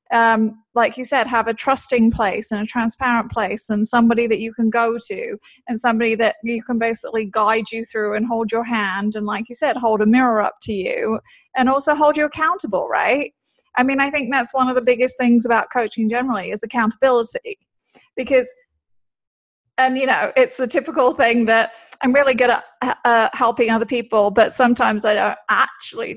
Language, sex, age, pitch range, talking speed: English, female, 30-49, 220-265 Hz, 195 wpm